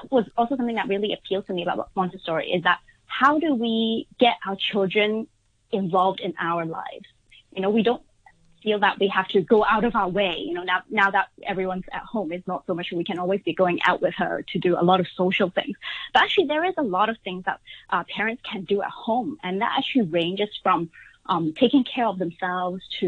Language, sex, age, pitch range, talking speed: English, female, 20-39, 185-230 Hz, 230 wpm